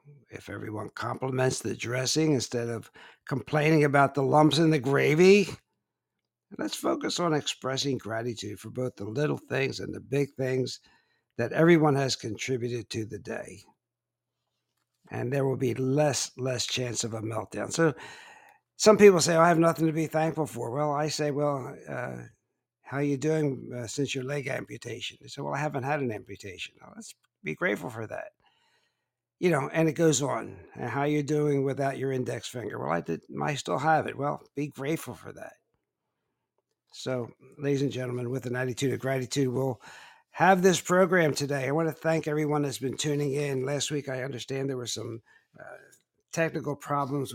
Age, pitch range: 60-79, 125-150 Hz